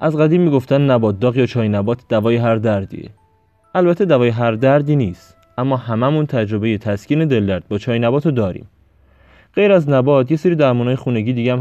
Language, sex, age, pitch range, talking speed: Persian, male, 20-39, 95-135 Hz, 185 wpm